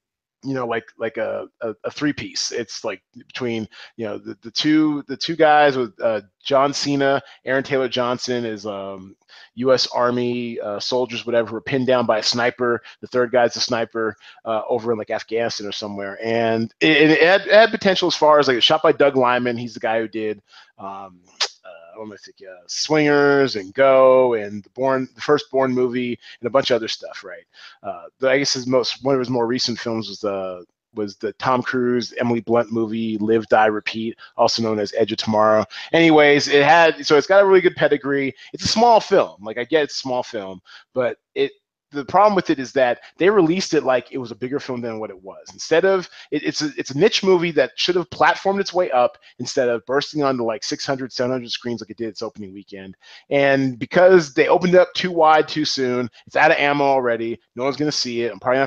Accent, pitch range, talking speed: American, 115-145 Hz, 225 wpm